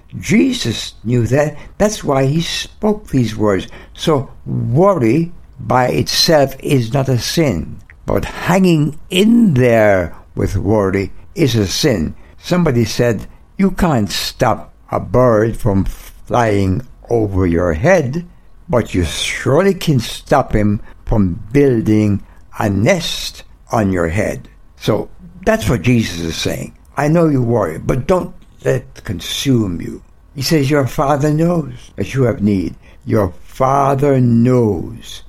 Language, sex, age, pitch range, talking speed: English, male, 60-79, 105-150 Hz, 135 wpm